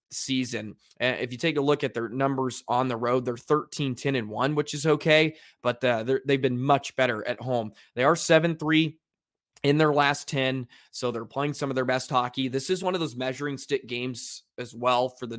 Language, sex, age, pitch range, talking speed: English, male, 20-39, 125-140 Hz, 210 wpm